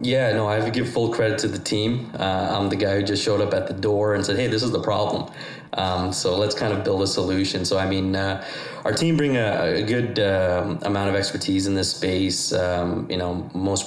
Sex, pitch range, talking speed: male, 90-105 Hz, 250 wpm